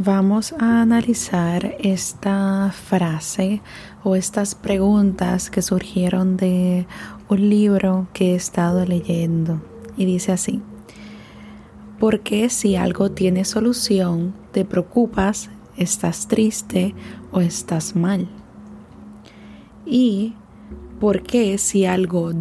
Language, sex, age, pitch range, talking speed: Spanish, female, 20-39, 185-215 Hz, 100 wpm